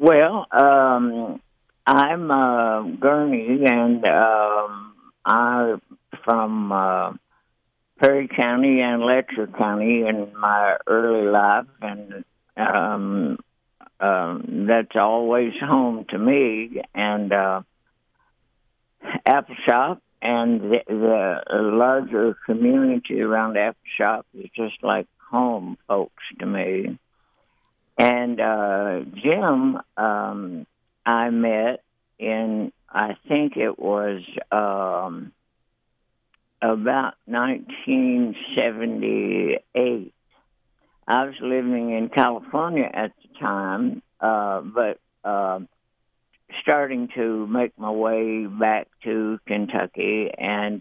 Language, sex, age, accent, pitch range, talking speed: English, male, 60-79, American, 105-130 Hz, 95 wpm